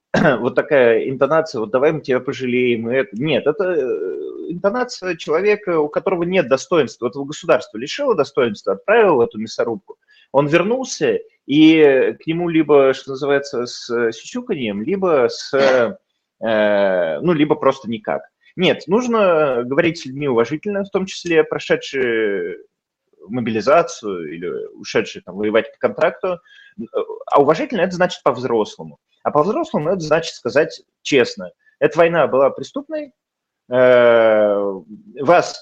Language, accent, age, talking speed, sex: Russian, native, 20-39, 125 wpm, male